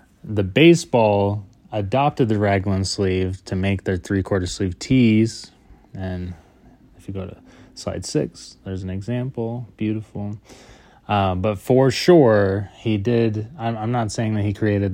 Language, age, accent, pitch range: English, 20-39, American, 95-120 Hz